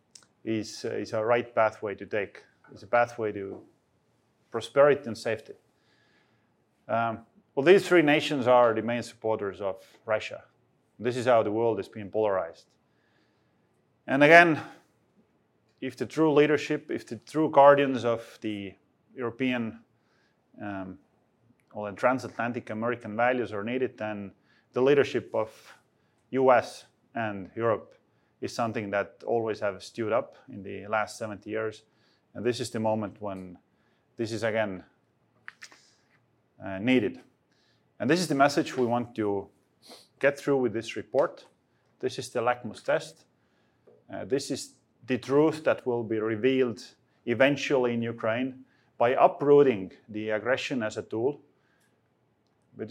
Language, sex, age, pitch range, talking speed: English, male, 30-49, 110-130 Hz, 140 wpm